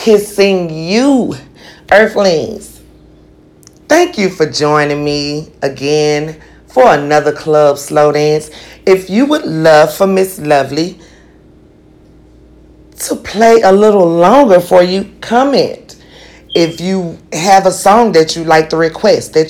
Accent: American